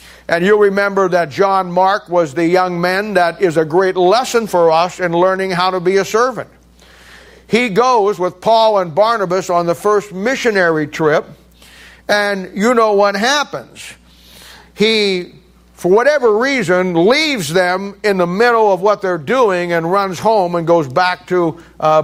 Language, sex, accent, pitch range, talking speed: English, male, American, 165-205 Hz, 165 wpm